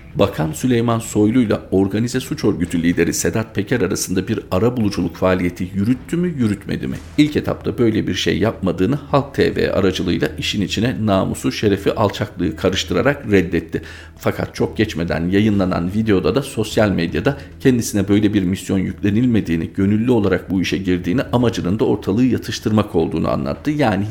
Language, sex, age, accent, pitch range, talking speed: Turkish, male, 50-69, native, 90-115 Hz, 145 wpm